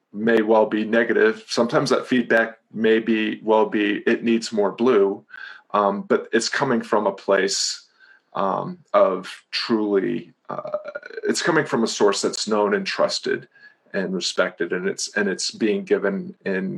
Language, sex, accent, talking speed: English, male, American, 155 wpm